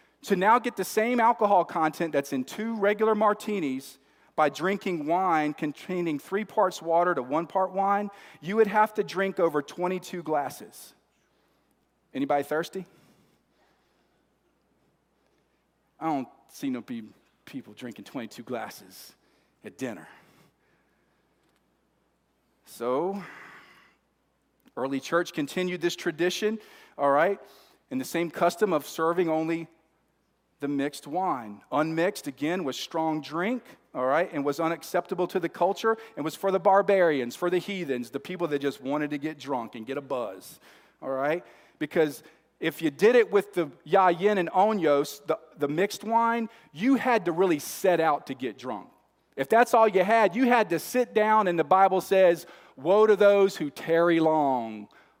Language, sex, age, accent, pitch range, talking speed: English, male, 40-59, American, 155-205 Hz, 150 wpm